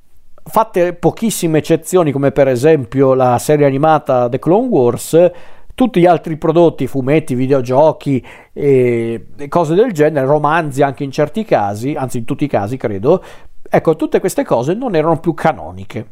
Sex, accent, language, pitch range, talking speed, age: male, native, Italian, 130-165 Hz, 155 wpm, 40-59